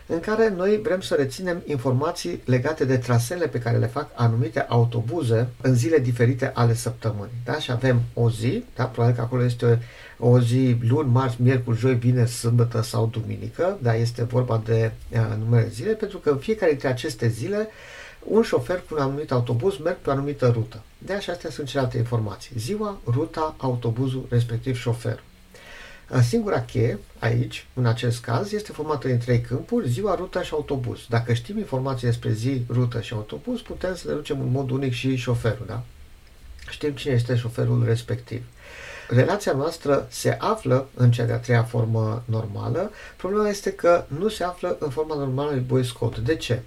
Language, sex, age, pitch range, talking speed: Romanian, male, 50-69, 115-145 Hz, 180 wpm